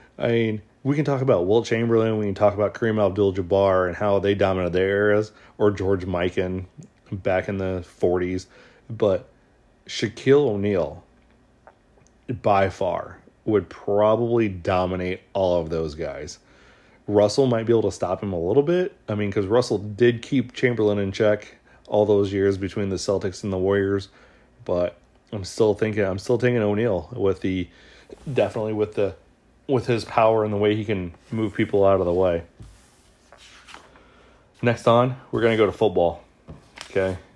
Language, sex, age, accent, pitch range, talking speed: English, male, 30-49, American, 95-110 Hz, 165 wpm